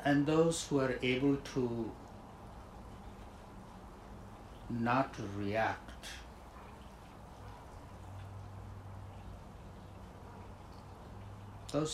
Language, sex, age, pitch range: English, male, 60-79, 90-115 Hz